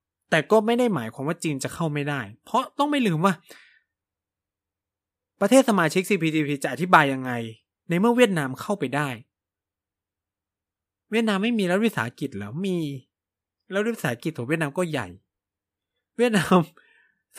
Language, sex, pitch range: Thai, male, 115-185 Hz